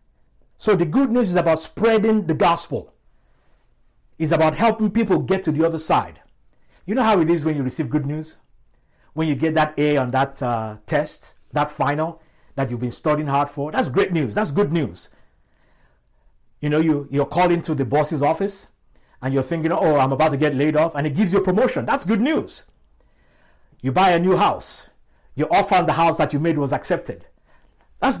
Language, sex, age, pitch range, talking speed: English, male, 50-69, 120-180 Hz, 200 wpm